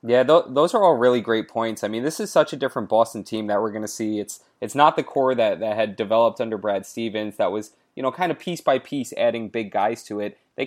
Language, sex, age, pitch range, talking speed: English, male, 20-39, 105-130 Hz, 270 wpm